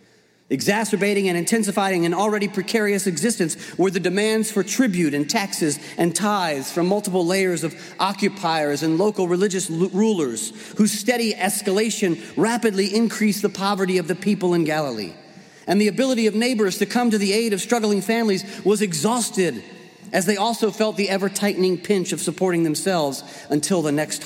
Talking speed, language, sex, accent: 160 wpm, English, male, American